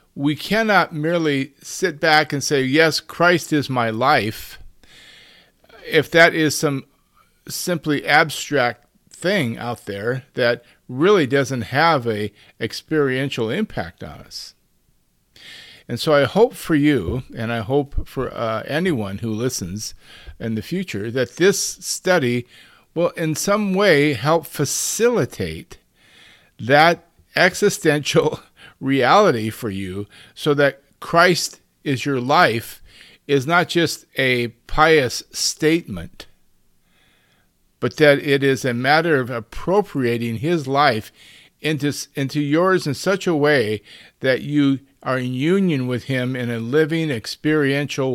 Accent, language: American, English